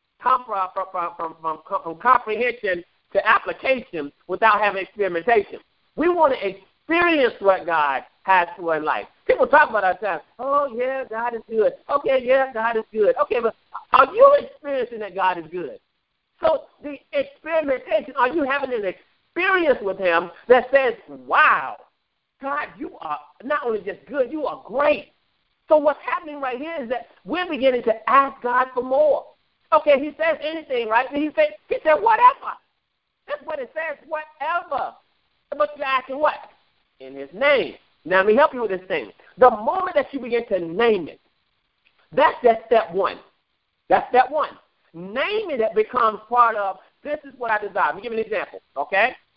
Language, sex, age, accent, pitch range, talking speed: English, male, 50-69, American, 205-295 Hz, 175 wpm